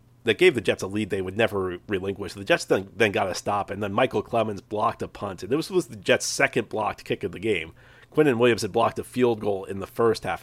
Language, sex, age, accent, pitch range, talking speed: English, male, 40-59, American, 100-125 Hz, 275 wpm